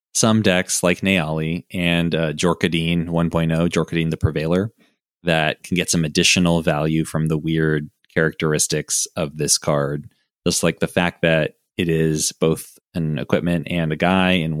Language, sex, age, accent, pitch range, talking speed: English, male, 20-39, American, 80-90 Hz, 155 wpm